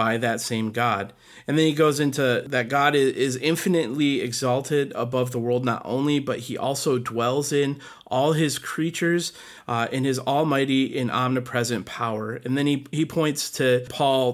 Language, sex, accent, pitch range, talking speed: English, male, American, 125-150 Hz, 170 wpm